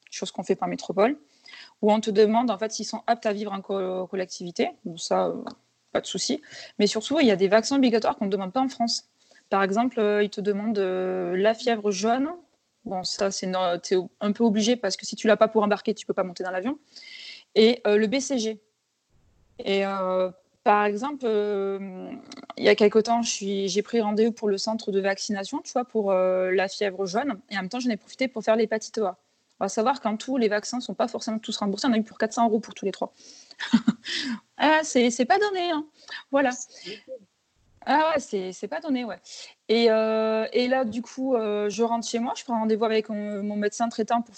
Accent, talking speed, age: French, 230 wpm, 20-39